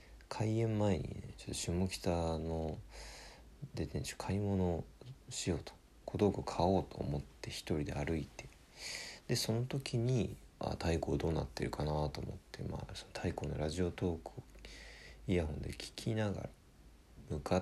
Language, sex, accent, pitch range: Japanese, male, native, 75-110 Hz